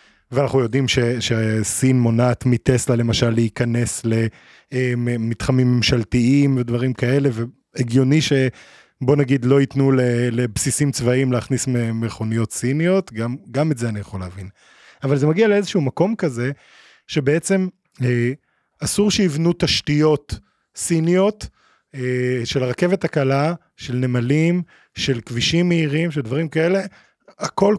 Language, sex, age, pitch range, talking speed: Hebrew, male, 20-39, 120-160 Hz, 110 wpm